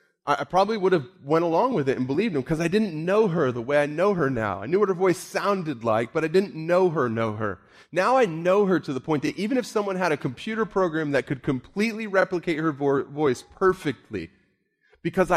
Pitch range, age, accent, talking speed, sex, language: 110-175 Hz, 30-49, American, 230 wpm, male, English